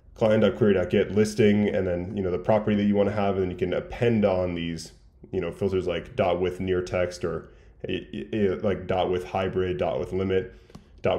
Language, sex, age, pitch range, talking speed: English, male, 10-29, 90-110 Hz, 200 wpm